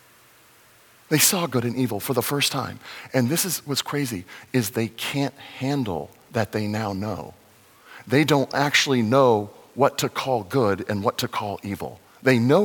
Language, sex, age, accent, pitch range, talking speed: English, male, 50-69, American, 115-145 Hz, 175 wpm